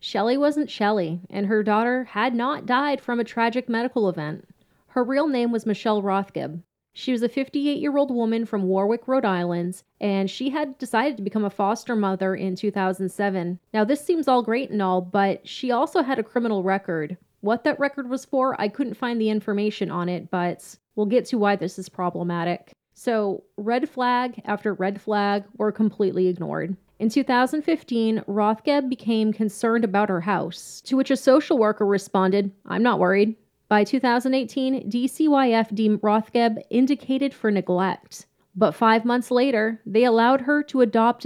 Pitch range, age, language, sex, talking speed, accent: 200-250 Hz, 30-49, English, female, 170 wpm, American